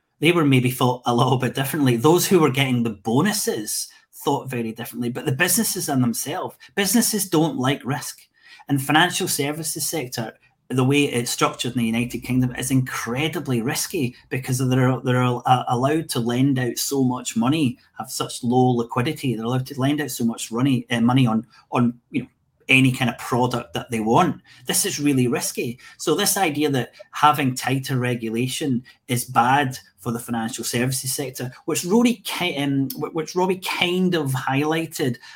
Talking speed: 170 wpm